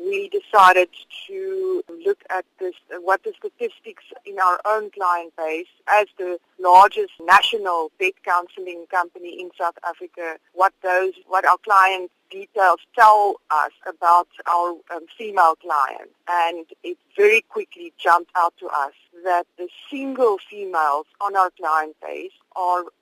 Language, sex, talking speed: English, female, 140 wpm